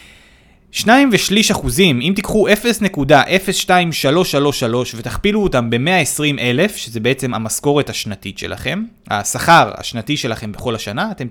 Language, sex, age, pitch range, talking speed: Hebrew, male, 20-39, 125-200 Hz, 110 wpm